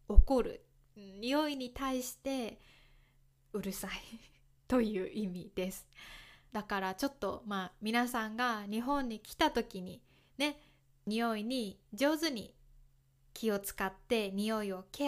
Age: 20-39